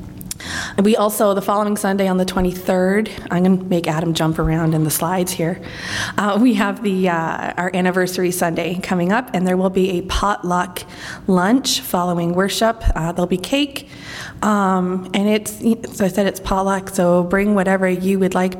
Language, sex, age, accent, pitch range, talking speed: English, female, 20-39, American, 180-210 Hz, 180 wpm